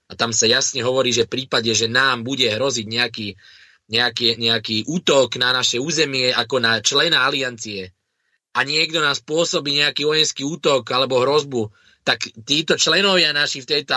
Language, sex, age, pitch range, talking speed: Slovak, male, 20-39, 120-155 Hz, 165 wpm